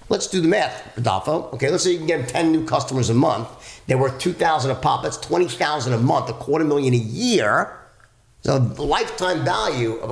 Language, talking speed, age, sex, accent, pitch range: English, 210 wpm, 50-69, male, American, 125-175 Hz